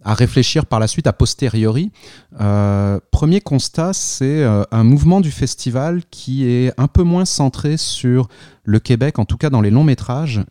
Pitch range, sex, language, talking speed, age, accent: 100-130 Hz, male, French, 175 wpm, 30-49, French